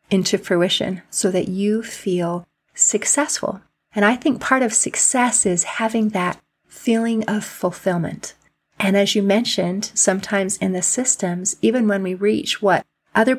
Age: 40-59